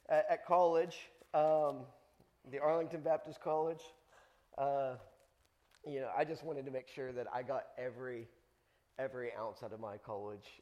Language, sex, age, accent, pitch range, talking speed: English, male, 30-49, American, 125-155 Hz, 145 wpm